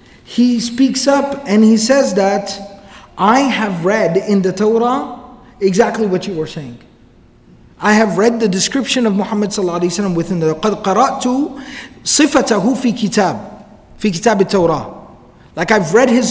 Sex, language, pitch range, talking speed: male, English, 190-235 Hz, 145 wpm